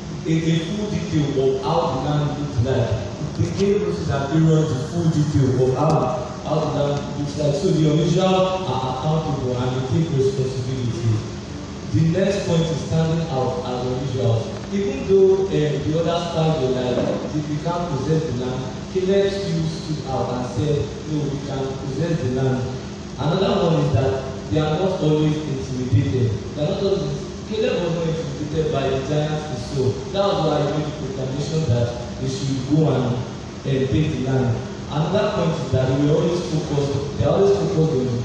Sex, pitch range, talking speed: male, 130-165 Hz, 180 wpm